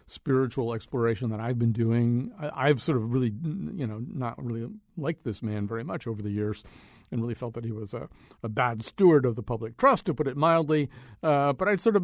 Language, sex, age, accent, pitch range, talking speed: English, male, 50-69, American, 115-170 Hz, 235 wpm